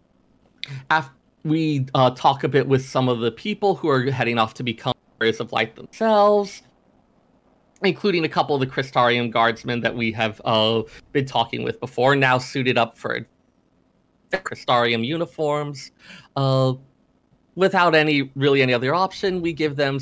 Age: 30-49